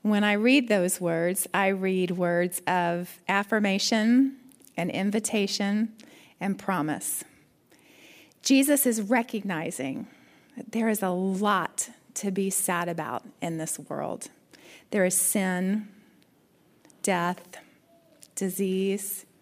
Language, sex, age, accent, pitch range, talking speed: English, female, 40-59, American, 185-230 Hz, 105 wpm